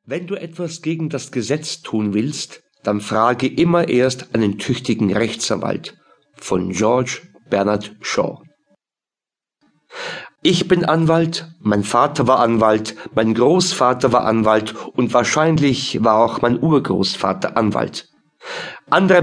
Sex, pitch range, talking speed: male, 120-165 Hz, 120 wpm